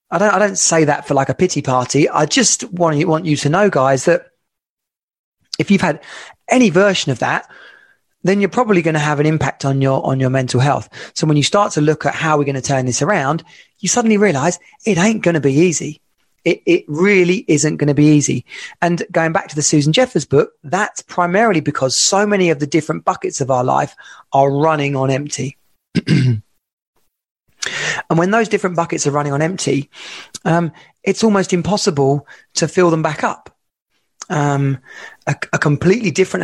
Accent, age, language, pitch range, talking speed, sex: British, 30-49, English, 145-190 Hz, 200 wpm, male